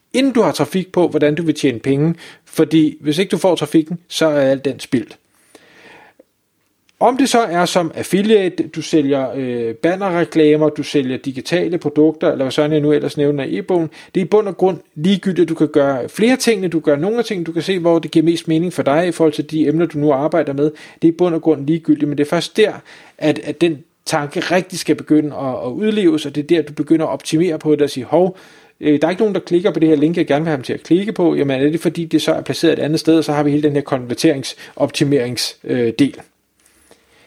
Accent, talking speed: native, 245 wpm